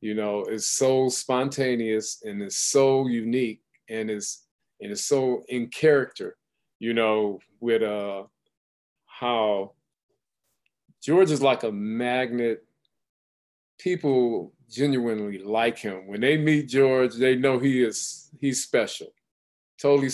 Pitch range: 105-130 Hz